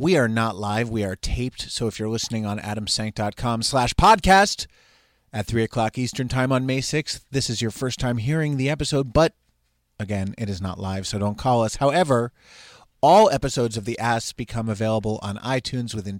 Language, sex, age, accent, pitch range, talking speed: English, male, 30-49, American, 105-130 Hz, 195 wpm